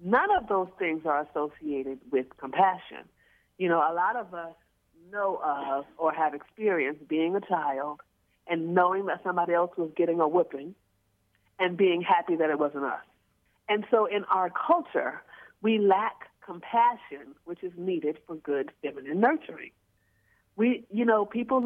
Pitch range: 155-205 Hz